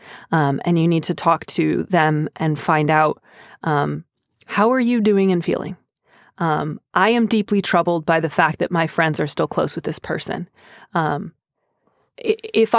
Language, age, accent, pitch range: English, 20-39, American, 175-215 Hz